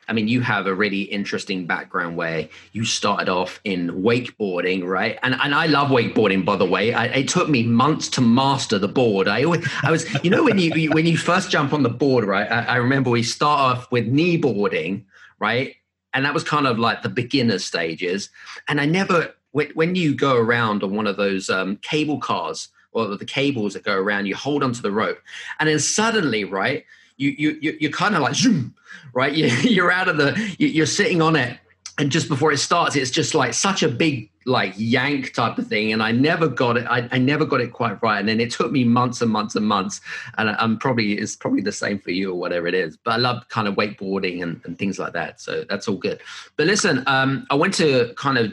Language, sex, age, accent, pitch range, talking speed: English, male, 30-49, British, 115-155 Hz, 230 wpm